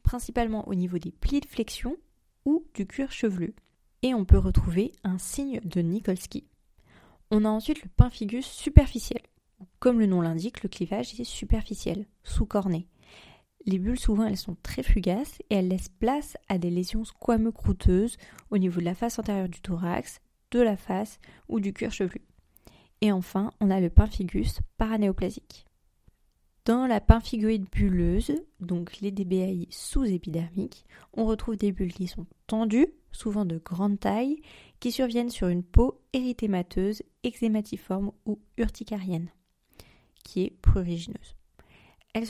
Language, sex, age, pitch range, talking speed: French, female, 30-49, 185-235 Hz, 150 wpm